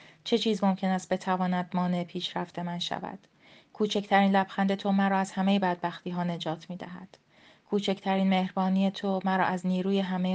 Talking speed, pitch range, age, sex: 155 wpm, 175-195 Hz, 30-49, female